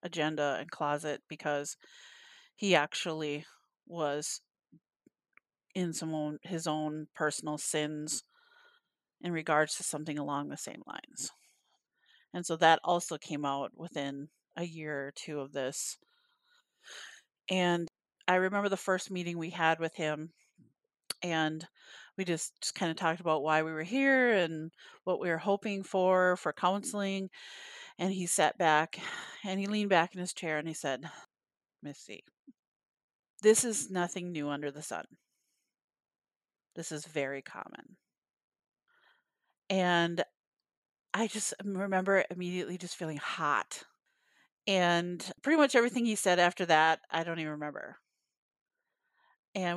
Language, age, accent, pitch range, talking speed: English, 30-49, American, 155-190 Hz, 135 wpm